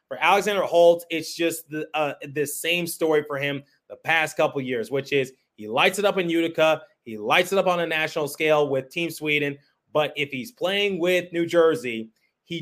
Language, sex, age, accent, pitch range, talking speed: English, male, 30-49, American, 145-170 Hz, 205 wpm